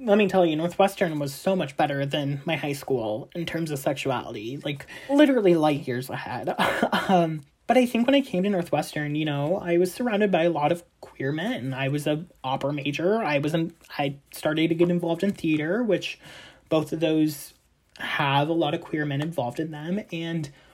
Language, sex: English, male